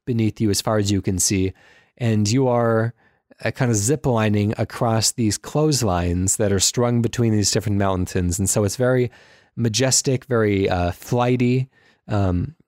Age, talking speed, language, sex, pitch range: 20-39, 160 wpm, English, male, 105-125 Hz